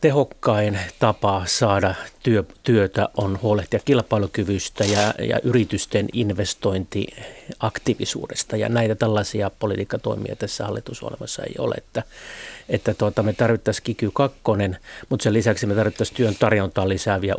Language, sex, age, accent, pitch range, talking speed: Finnish, male, 30-49, native, 100-115 Hz, 105 wpm